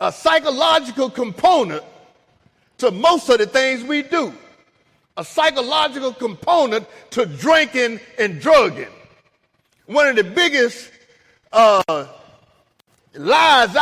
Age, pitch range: 50-69, 250-300 Hz